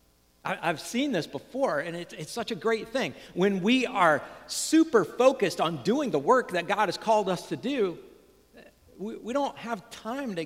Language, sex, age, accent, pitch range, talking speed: English, male, 50-69, American, 155-215 Hz, 190 wpm